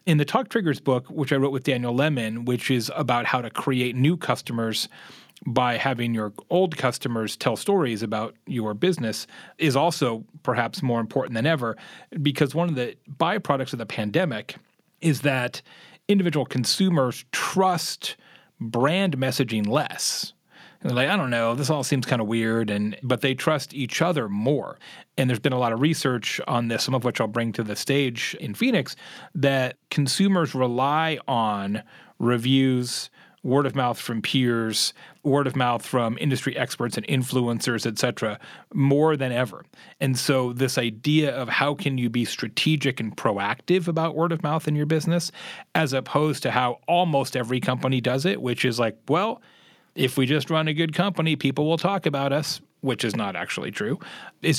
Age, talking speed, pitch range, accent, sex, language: 30-49, 175 wpm, 120-155 Hz, American, male, English